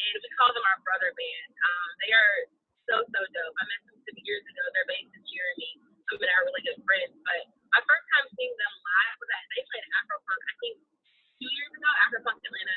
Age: 20-39